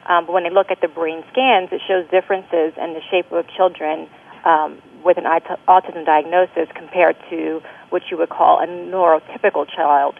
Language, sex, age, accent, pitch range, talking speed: English, female, 30-49, American, 160-185 Hz, 180 wpm